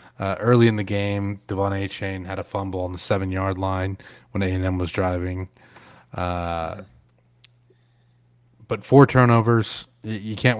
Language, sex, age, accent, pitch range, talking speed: English, male, 30-49, American, 95-110 Hz, 135 wpm